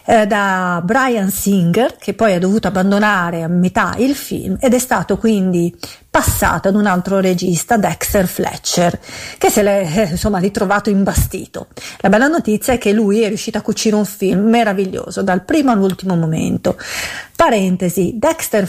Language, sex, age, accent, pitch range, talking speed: Italian, female, 40-59, native, 185-235 Hz, 155 wpm